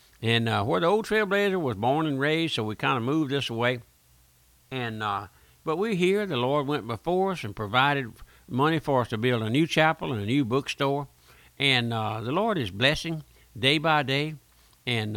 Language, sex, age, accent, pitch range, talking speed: English, male, 60-79, American, 115-140 Hz, 205 wpm